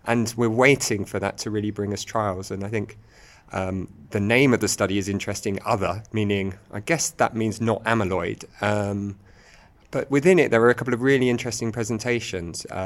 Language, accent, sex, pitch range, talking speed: English, British, male, 95-115 Hz, 190 wpm